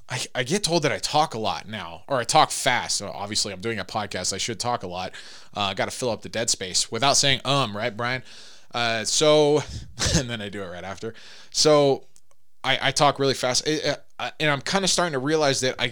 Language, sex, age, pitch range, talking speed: English, male, 20-39, 105-130 Hz, 235 wpm